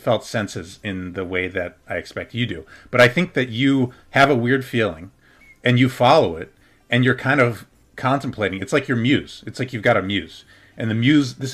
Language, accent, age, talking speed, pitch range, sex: English, American, 40-59, 220 wpm, 95-125 Hz, male